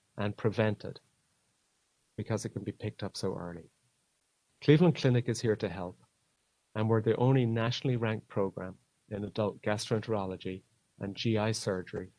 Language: English